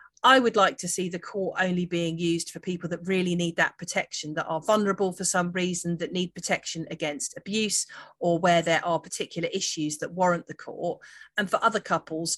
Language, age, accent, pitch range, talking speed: English, 40-59, British, 170-205 Hz, 205 wpm